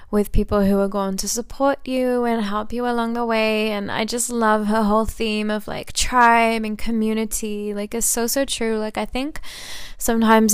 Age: 10-29